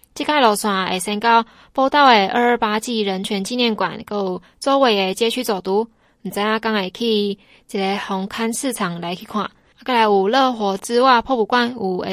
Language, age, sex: Chinese, 20-39, female